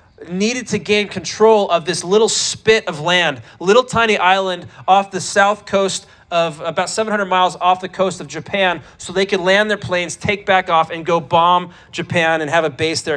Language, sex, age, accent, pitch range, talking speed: English, male, 30-49, American, 170-205 Hz, 205 wpm